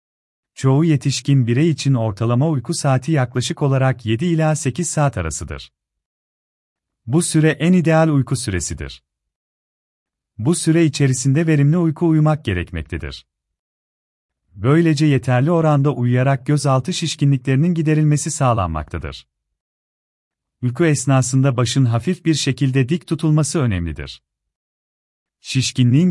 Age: 40-59